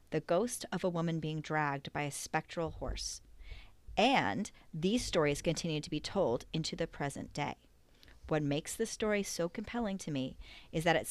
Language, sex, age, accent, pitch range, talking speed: English, female, 30-49, American, 155-195 Hz, 180 wpm